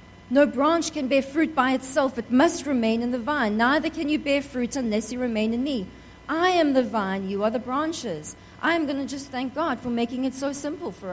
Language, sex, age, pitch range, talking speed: English, female, 40-59, 205-285 Hz, 235 wpm